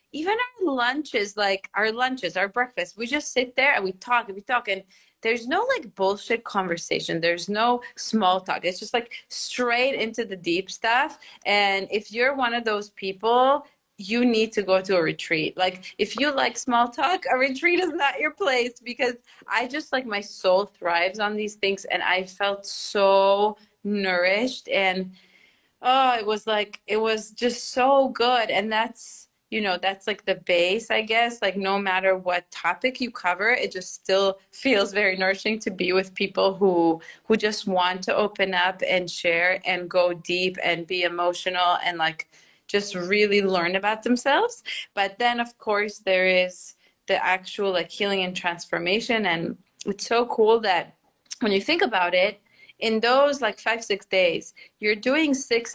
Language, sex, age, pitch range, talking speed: English, female, 30-49, 185-240 Hz, 180 wpm